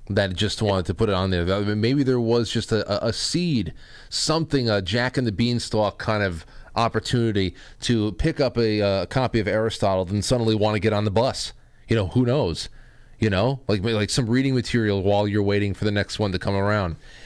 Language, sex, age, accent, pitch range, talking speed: English, male, 30-49, American, 100-130 Hz, 210 wpm